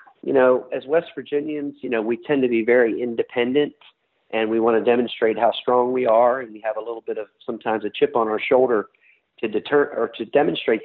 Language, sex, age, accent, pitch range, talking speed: English, male, 40-59, American, 115-150 Hz, 220 wpm